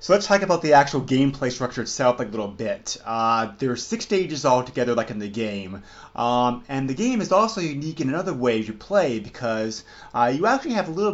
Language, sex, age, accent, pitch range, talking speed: English, male, 30-49, American, 110-140 Hz, 230 wpm